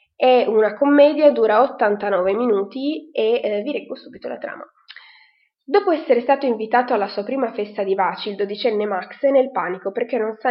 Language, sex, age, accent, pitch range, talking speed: Italian, female, 20-39, native, 200-265 Hz, 185 wpm